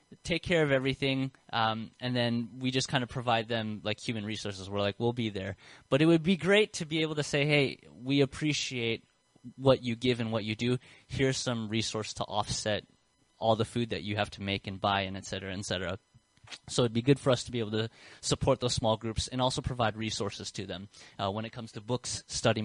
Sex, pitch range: male, 105-140 Hz